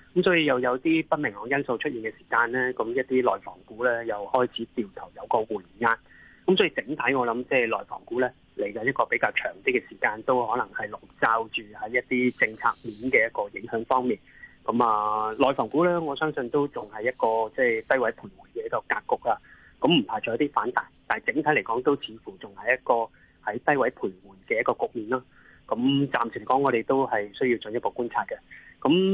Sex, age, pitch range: male, 20-39, 115-150 Hz